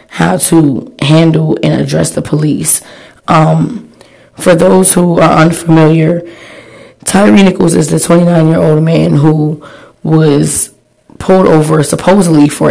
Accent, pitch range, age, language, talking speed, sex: American, 150-165 Hz, 20-39, English, 120 wpm, female